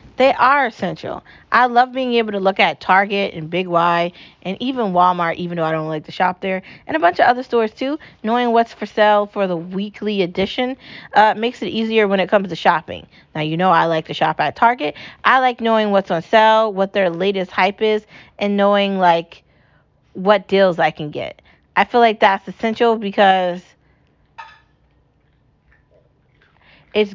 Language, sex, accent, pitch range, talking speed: English, female, American, 185-220 Hz, 185 wpm